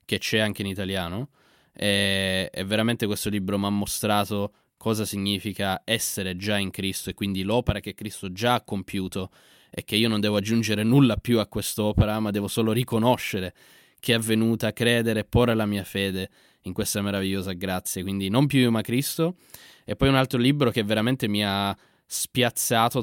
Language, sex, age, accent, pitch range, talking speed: Italian, male, 20-39, native, 100-120 Hz, 185 wpm